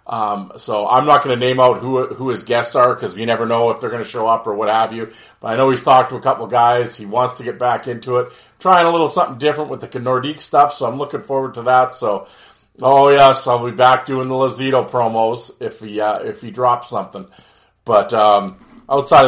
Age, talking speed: 40-59, 245 wpm